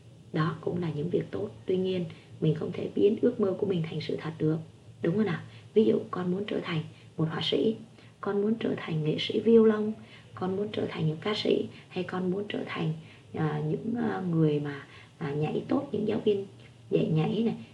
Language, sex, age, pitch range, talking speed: Vietnamese, female, 20-39, 150-205 Hz, 215 wpm